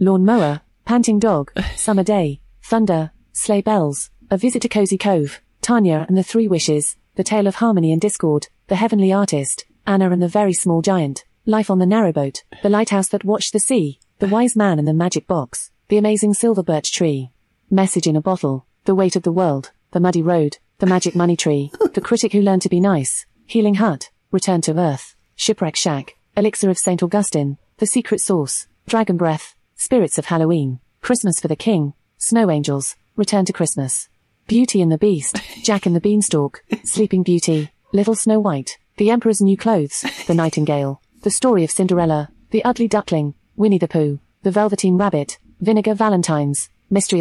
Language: English